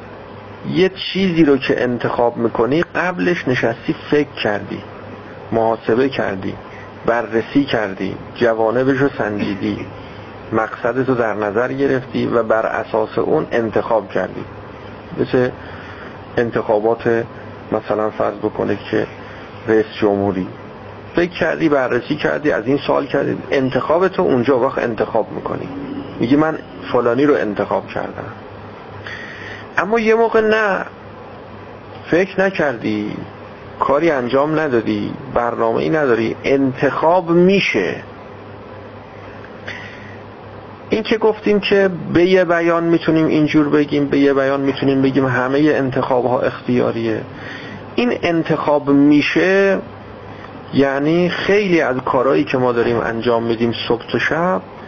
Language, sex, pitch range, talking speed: Persian, male, 105-145 Hz, 115 wpm